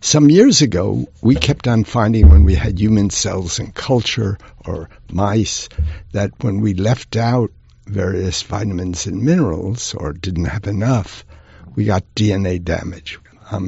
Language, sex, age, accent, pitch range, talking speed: English, male, 60-79, American, 95-115 Hz, 150 wpm